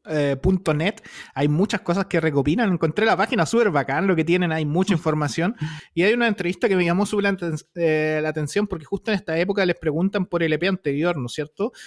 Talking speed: 220 wpm